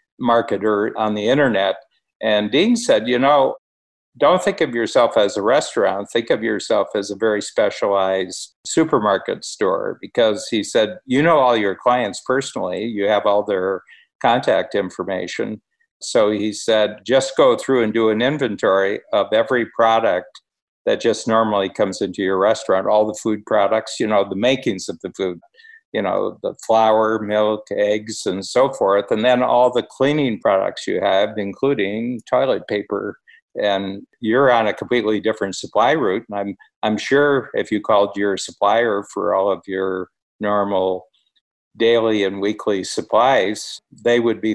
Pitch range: 100-125 Hz